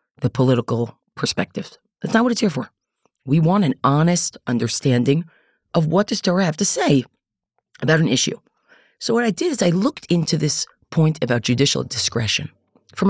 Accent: American